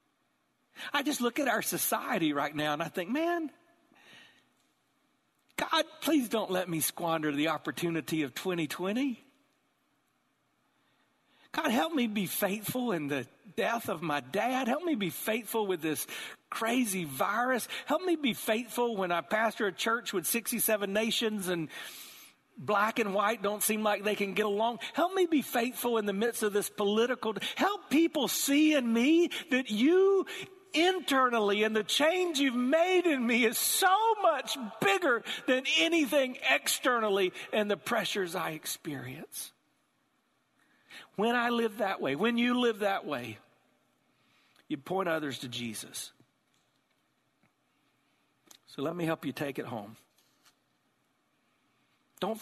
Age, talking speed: 50-69, 145 wpm